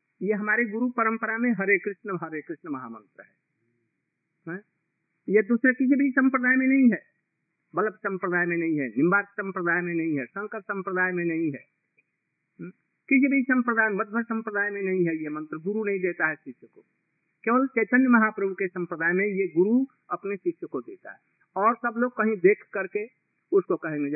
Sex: male